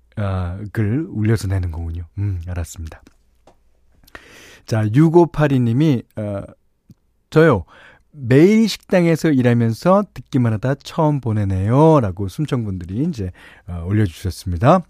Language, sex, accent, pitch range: Korean, male, native, 95-155 Hz